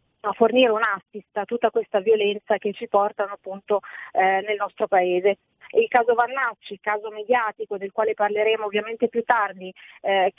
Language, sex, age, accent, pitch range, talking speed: Italian, female, 30-49, native, 205-240 Hz, 160 wpm